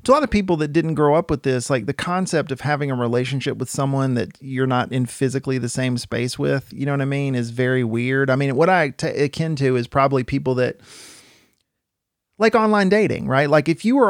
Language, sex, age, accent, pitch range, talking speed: English, male, 40-59, American, 135-190 Hz, 240 wpm